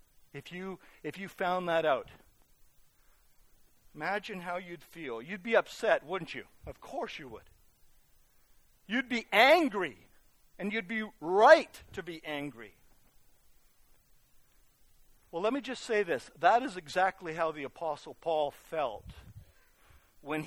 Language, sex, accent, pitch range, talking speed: English, male, American, 150-220 Hz, 130 wpm